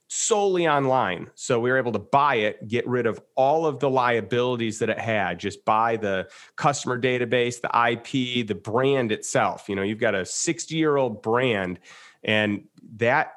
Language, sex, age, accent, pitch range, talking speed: English, male, 30-49, American, 110-130 Hz, 180 wpm